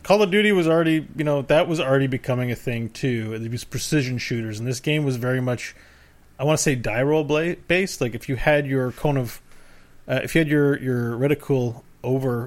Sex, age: male, 30-49